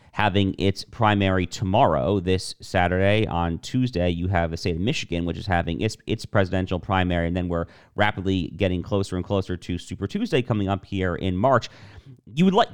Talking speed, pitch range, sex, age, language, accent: 190 wpm, 95-120 Hz, male, 40-59, English, American